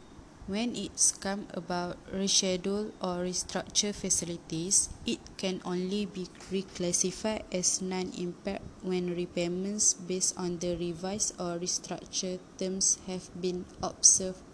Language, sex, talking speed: English, female, 115 wpm